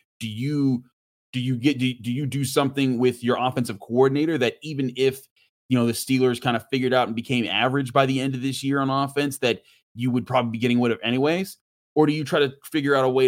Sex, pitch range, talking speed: male, 110-135 Hz, 245 wpm